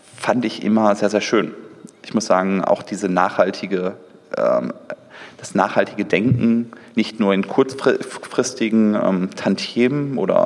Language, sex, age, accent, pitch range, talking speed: German, male, 30-49, German, 100-115 Hz, 130 wpm